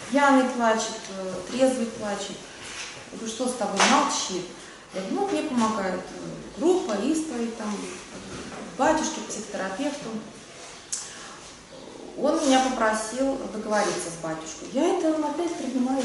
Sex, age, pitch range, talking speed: female, 30-49, 205-260 Hz, 95 wpm